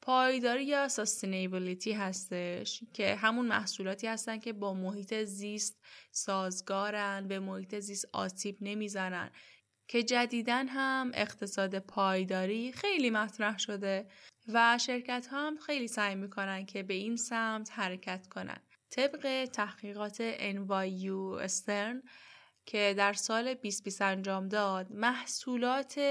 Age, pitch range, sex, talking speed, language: 10-29, 195-240 Hz, female, 115 wpm, Persian